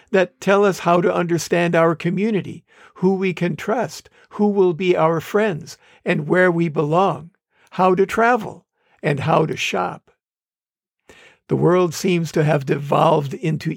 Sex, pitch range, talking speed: male, 165-195 Hz, 155 wpm